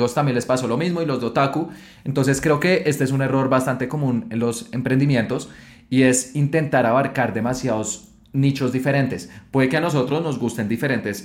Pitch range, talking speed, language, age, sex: 120-140 Hz, 185 wpm, Spanish, 20-39, male